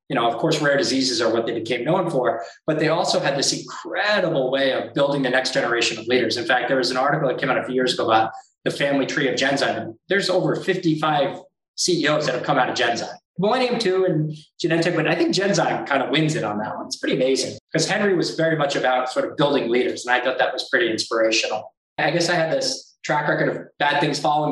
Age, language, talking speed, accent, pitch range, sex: 20-39, English, 250 wpm, American, 125-160 Hz, male